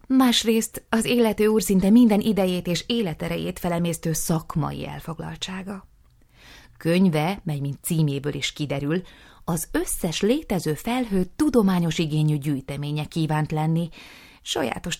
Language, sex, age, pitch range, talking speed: Hungarian, female, 30-49, 155-205 Hz, 110 wpm